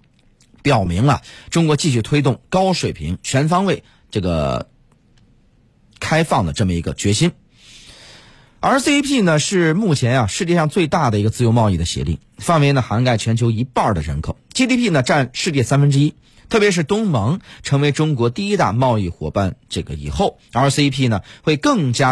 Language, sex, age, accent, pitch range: Chinese, male, 30-49, native, 115-170 Hz